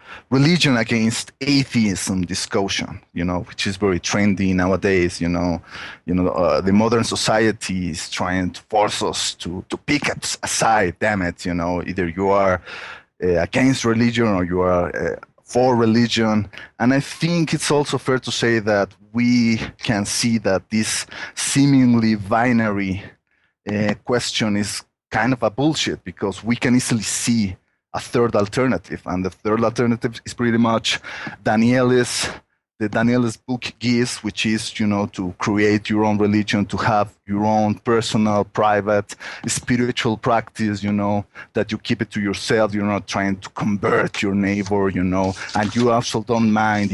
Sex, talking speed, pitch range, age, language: male, 160 wpm, 100-120 Hz, 30-49, English